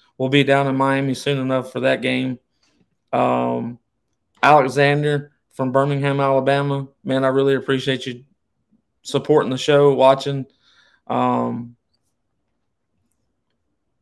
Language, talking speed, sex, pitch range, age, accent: English, 105 wpm, male, 120-135 Hz, 20-39, American